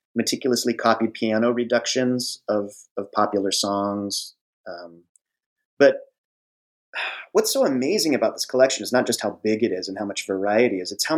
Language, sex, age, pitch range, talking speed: English, male, 30-49, 100-125 Hz, 160 wpm